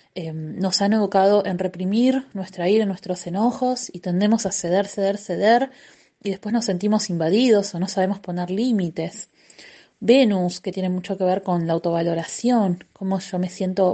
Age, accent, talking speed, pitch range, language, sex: 20-39, Argentinian, 165 wpm, 180-215 Hz, Spanish, female